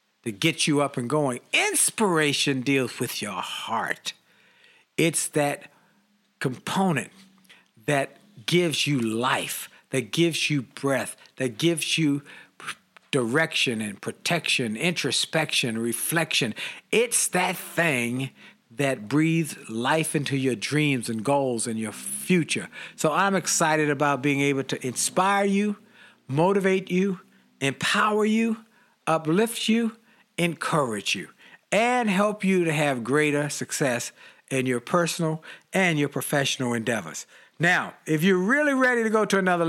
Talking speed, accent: 130 wpm, American